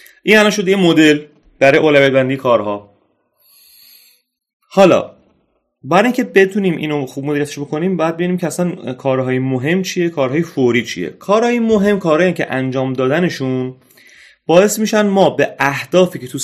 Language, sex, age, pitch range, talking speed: Persian, male, 30-49, 130-190 Hz, 145 wpm